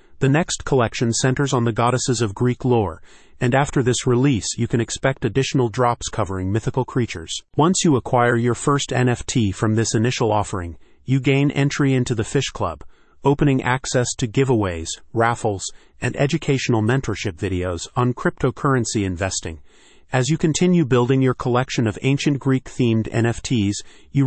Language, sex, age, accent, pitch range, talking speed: English, male, 40-59, American, 110-135 Hz, 155 wpm